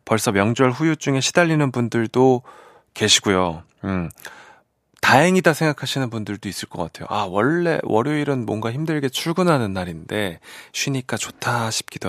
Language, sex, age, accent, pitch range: Korean, male, 30-49, native, 105-160 Hz